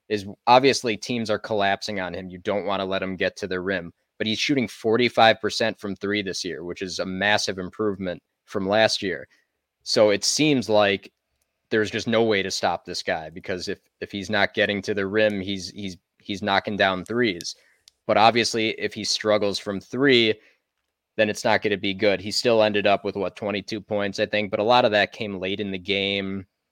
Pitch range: 95-110 Hz